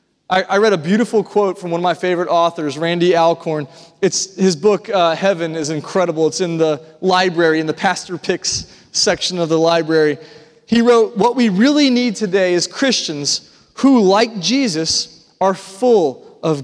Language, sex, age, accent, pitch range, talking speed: English, male, 30-49, American, 185-250 Hz, 170 wpm